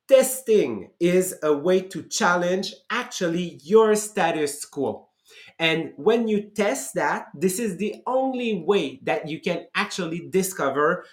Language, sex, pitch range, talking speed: English, male, 150-200 Hz, 135 wpm